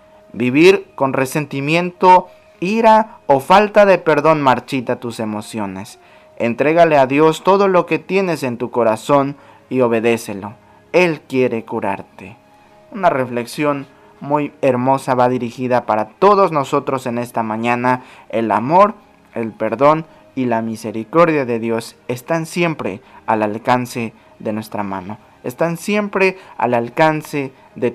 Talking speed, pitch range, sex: 125 wpm, 115-160 Hz, male